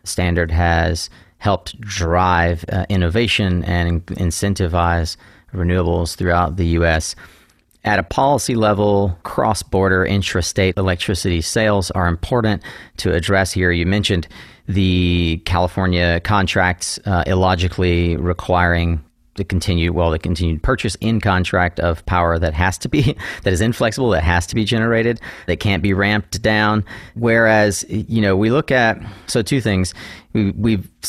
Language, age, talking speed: English, 30-49, 135 wpm